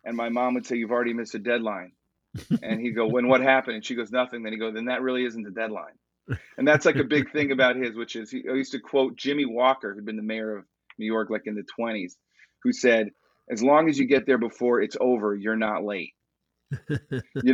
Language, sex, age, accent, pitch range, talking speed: English, male, 30-49, American, 115-145 Hz, 245 wpm